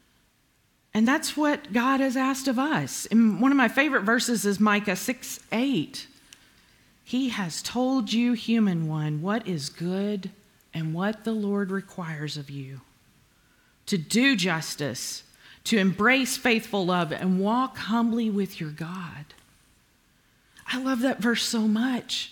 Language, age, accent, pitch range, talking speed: English, 40-59, American, 170-235 Hz, 140 wpm